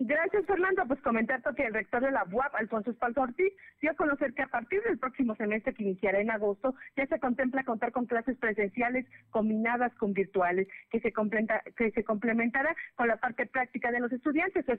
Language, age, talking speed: Spanish, 40-59, 200 wpm